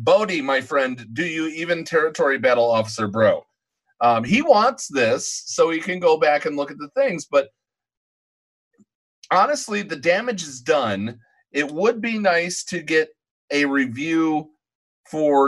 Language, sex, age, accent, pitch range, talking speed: English, male, 30-49, American, 140-235 Hz, 150 wpm